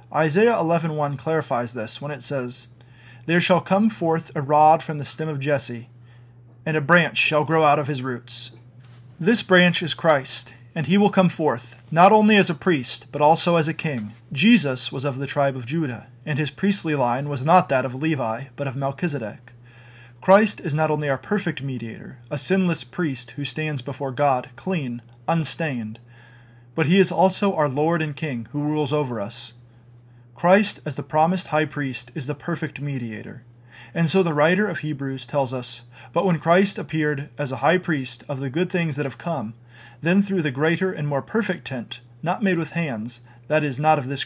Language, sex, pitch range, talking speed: English, male, 125-165 Hz, 195 wpm